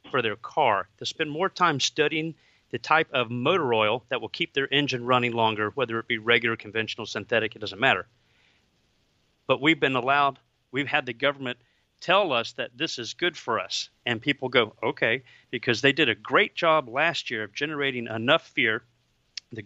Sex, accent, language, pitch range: male, American, English, 120-160 Hz